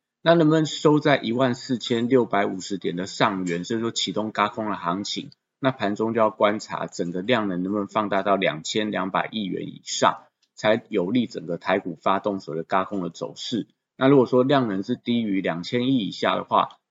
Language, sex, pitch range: Chinese, male, 95-125 Hz